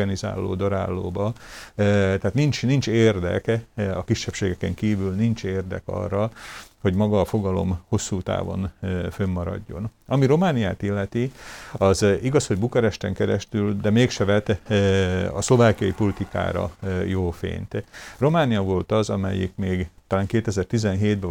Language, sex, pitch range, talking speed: Hungarian, male, 95-105 Hz, 130 wpm